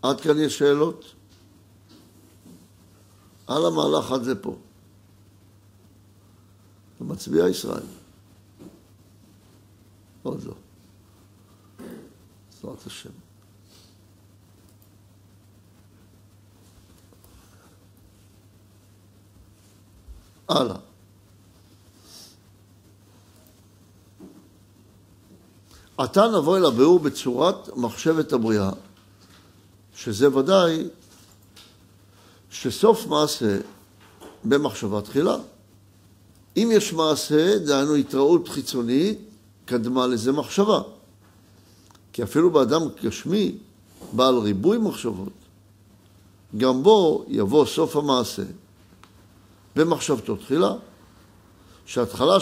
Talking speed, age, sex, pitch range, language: 60 wpm, 60-79, male, 100-110 Hz, Hebrew